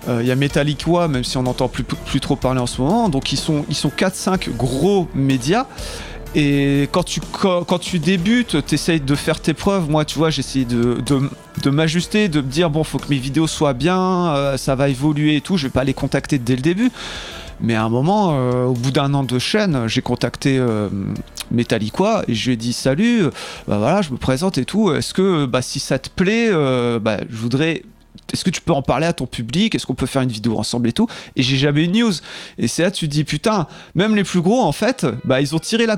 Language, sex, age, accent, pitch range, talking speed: French, male, 30-49, French, 135-190 Hz, 250 wpm